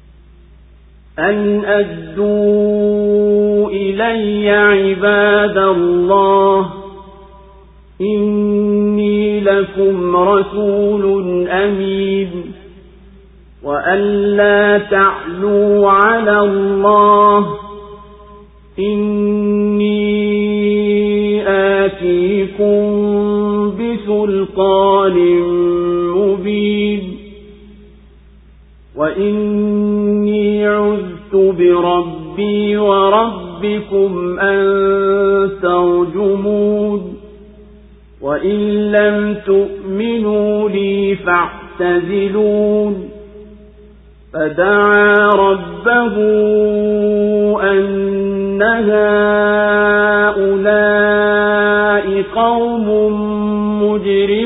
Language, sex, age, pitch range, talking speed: Swahili, male, 50-69, 195-210 Hz, 35 wpm